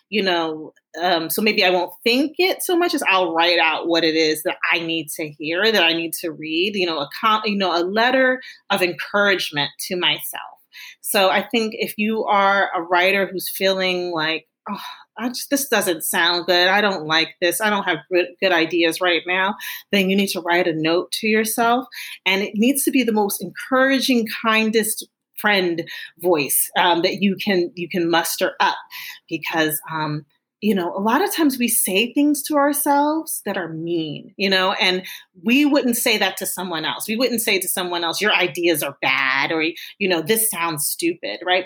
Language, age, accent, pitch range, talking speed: English, 30-49, American, 175-225 Hz, 205 wpm